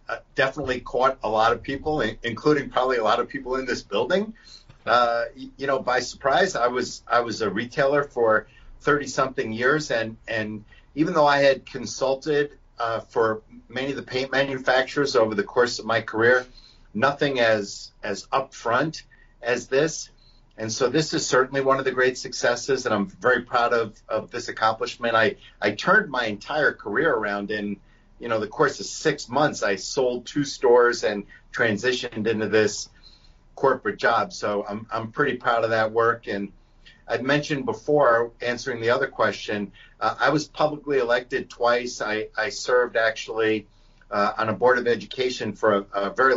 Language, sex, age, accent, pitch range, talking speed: English, male, 50-69, American, 110-135 Hz, 175 wpm